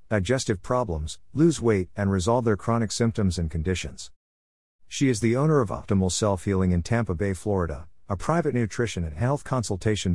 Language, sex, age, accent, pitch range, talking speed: English, male, 50-69, American, 85-115 Hz, 165 wpm